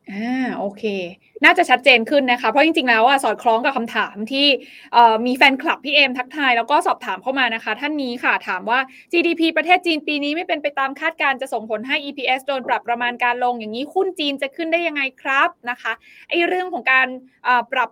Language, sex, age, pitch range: Thai, female, 20-39, 240-295 Hz